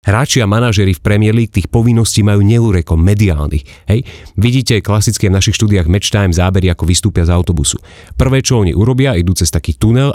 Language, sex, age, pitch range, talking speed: Slovak, male, 40-59, 95-115 Hz, 190 wpm